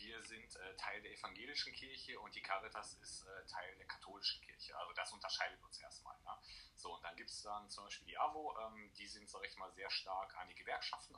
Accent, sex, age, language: German, male, 30-49, German